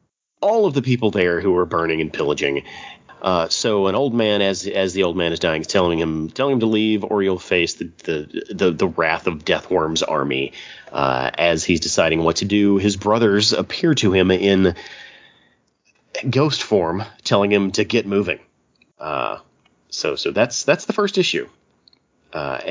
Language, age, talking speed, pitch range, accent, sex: English, 30-49, 185 wpm, 90-120 Hz, American, male